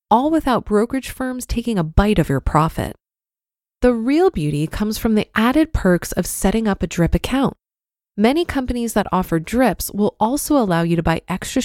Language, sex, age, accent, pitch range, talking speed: English, female, 20-39, American, 175-250 Hz, 185 wpm